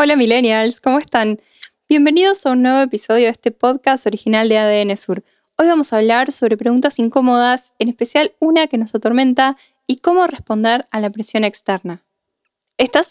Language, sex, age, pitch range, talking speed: Spanish, female, 10-29, 215-275 Hz, 170 wpm